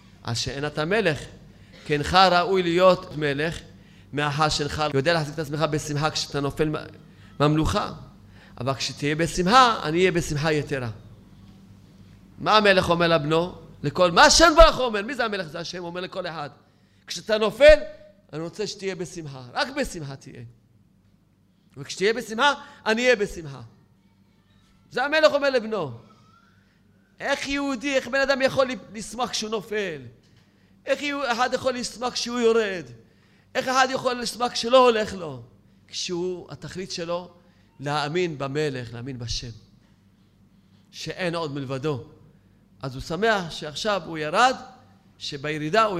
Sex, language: male, Hebrew